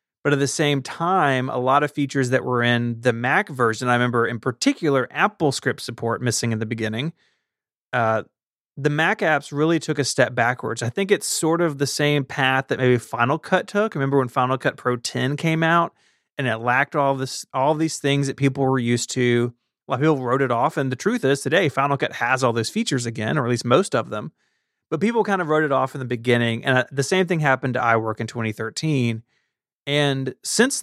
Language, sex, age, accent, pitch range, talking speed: English, male, 30-49, American, 120-150 Hz, 220 wpm